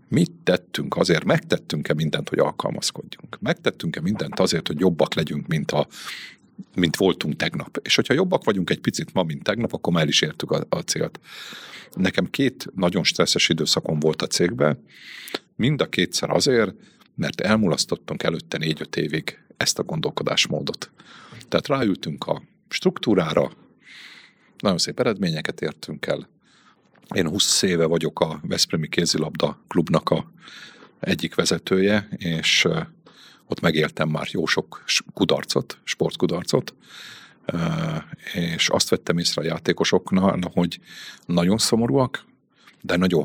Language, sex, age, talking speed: Hungarian, male, 50-69, 130 wpm